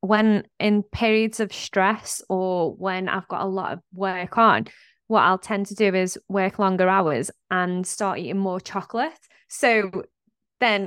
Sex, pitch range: female, 195-225 Hz